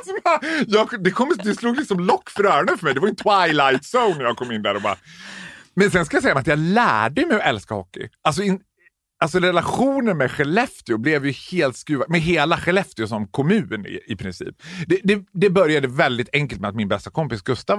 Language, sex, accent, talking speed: Swedish, male, native, 215 wpm